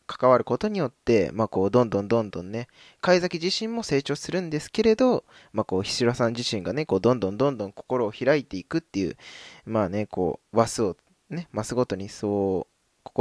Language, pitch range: Japanese, 100-135 Hz